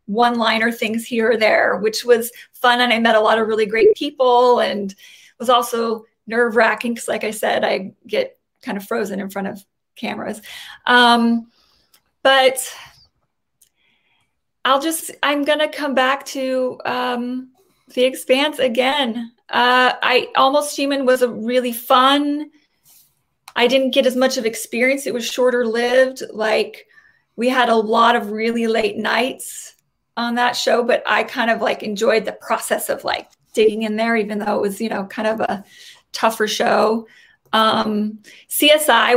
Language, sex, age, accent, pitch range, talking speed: English, female, 30-49, American, 215-265 Hz, 160 wpm